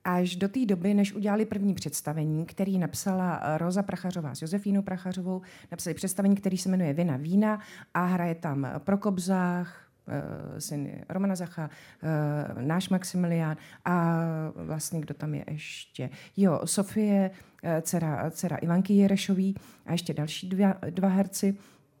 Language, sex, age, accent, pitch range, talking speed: Czech, female, 40-59, native, 160-200 Hz, 135 wpm